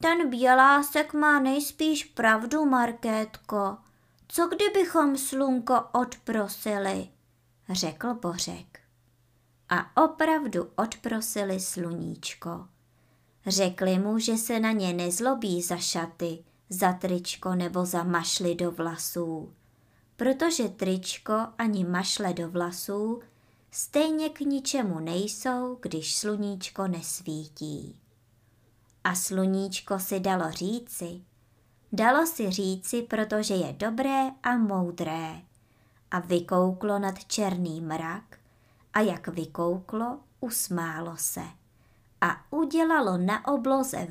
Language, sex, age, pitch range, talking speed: Czech, male, 20-39, 170-255 Hz, 100 wpm